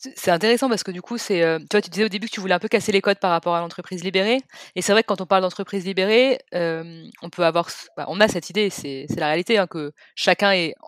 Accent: French